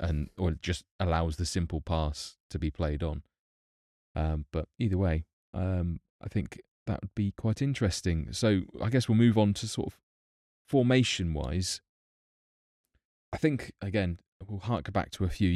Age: 20-39